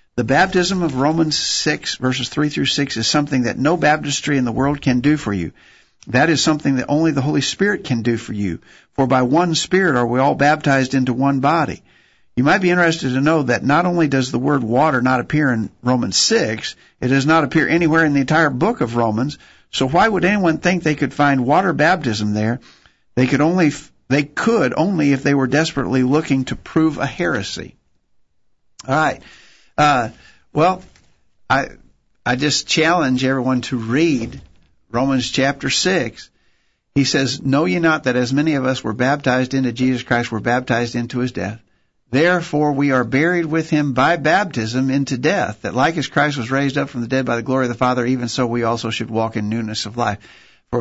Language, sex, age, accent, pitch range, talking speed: English, male, 50-69, American, 120-150 Hz, 200 wpm